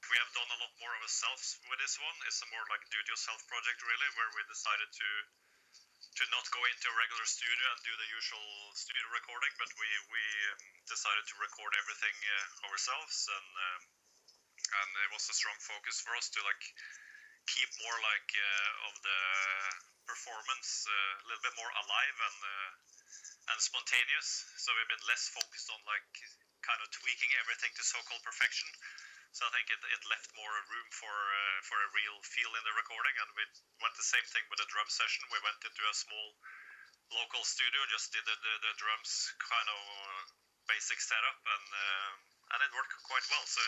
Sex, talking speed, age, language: male, 190 wpm, 30-49, English